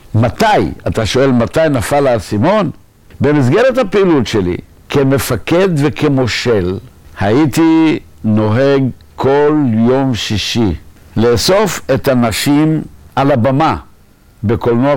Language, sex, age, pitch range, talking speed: Hebrew, male, 60-79, 105-145 Hz, 90 wpm